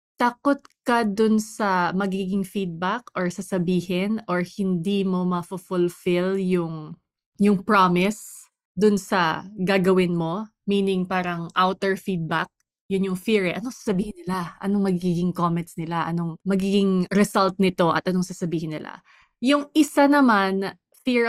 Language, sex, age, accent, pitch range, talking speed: English, female, 20-39, Filipino, 180-215 Hz, 130 wpm